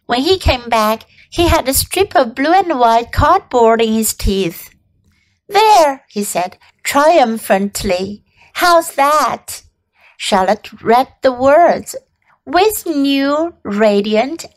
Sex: female